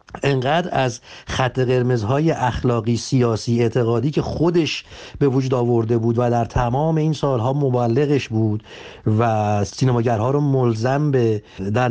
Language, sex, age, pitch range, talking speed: Persian, male, 50-69, 115-145 Hz, 130 wpm